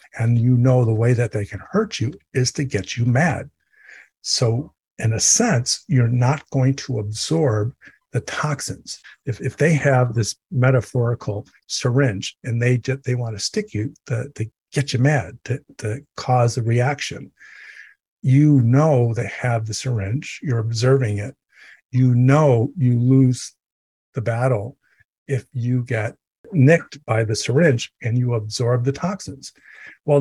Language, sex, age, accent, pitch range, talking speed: English, male, 50-69, American, 115-140 Hz, 155 wpm